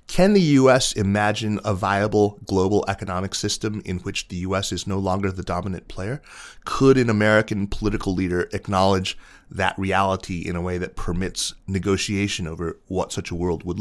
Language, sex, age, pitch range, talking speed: English, male, 30-49, 90-110 Hz, 170 wpm